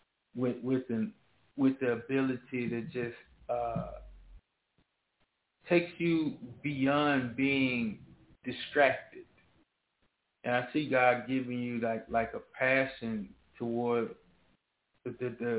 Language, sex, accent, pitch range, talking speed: English, male, American, 120-140 Hz, 105 wpm